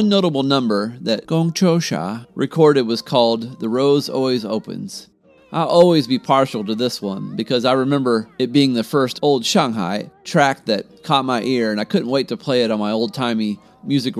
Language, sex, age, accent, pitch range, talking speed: English, male, 40-59, American, 110-140 Hz, 190 wpm